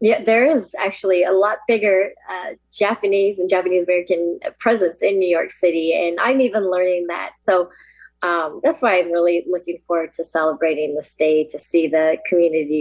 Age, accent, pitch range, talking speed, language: 30-49, American, 170-195 Hz, 180 wpm, English